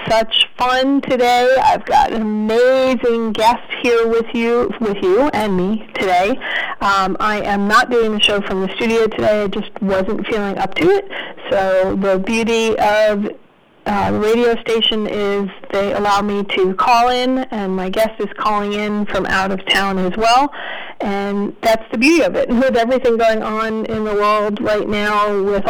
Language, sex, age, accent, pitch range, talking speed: English, female, 30-49, American, 200-230 Hz, 180 wpm